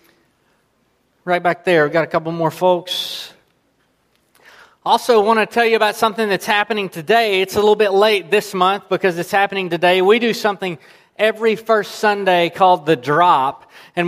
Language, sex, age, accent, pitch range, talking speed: English, male, 30-49, American, 175-205 Hz, 170 wpm